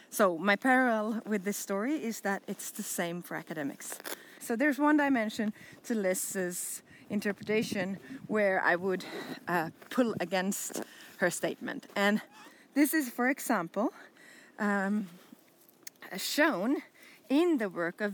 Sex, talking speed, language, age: female, 130 wpm, Swedish, 30-49